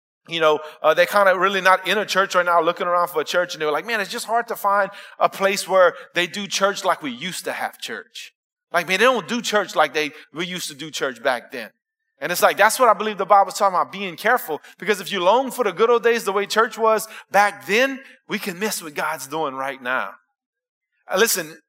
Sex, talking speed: male, 255 wpm